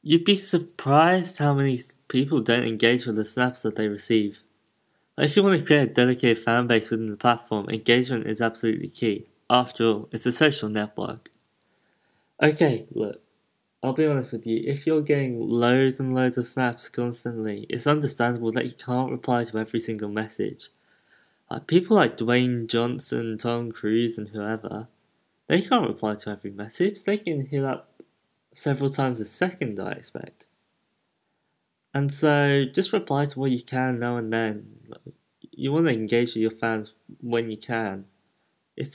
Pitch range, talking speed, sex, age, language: 110-140 Hz, 170 wpm, male, 20-39, English